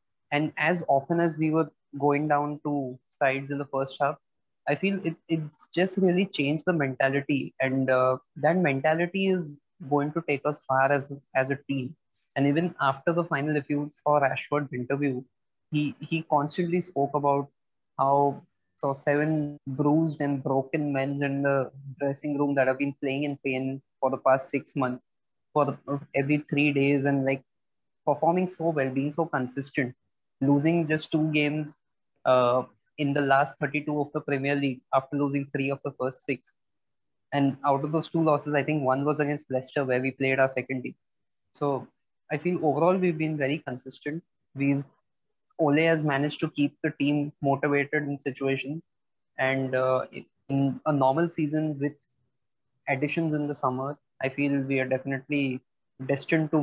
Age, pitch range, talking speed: 20-39, 135-150 Hz, 170 wpm